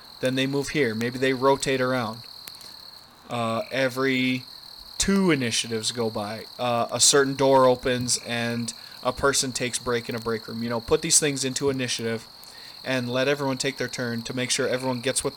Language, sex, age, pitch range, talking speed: English, male, 20-39, 120-135 Hz, 185 wpm